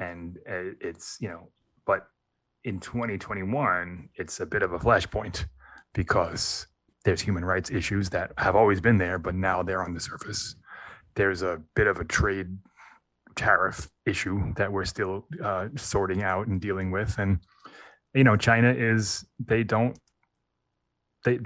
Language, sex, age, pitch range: English, male, 20-39, 95-115 Hz